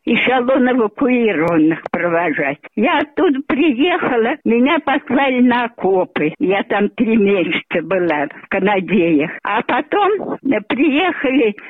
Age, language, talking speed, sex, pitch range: 60-79, Russian, 110 wpm, female, 210-290 Hz